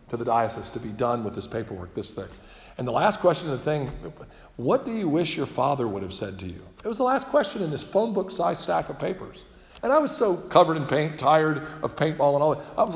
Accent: American